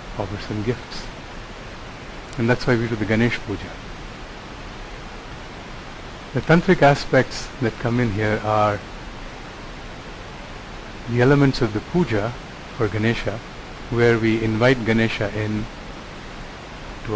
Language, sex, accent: English, male, Indian